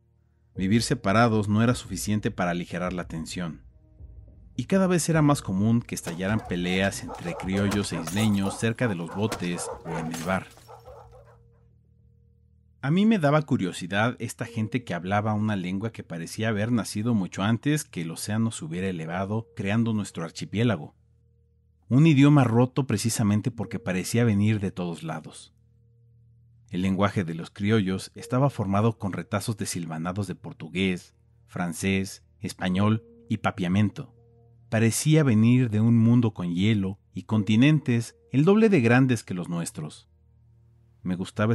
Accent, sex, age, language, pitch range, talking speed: Mexican, male, 40-59, Spanish, 95-115 Hz, 145 wpm